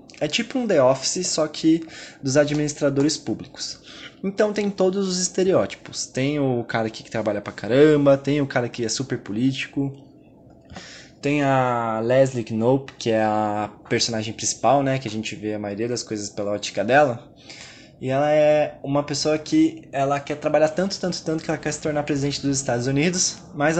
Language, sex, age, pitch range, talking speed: Portuguese, male, 20-39, 115-155 Hz, 185 wpm